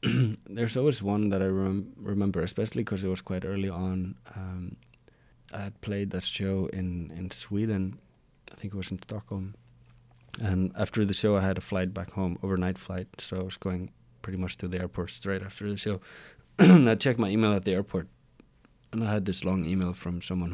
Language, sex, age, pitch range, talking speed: English, male, 20-39, 85-100 Hz, 200 wpm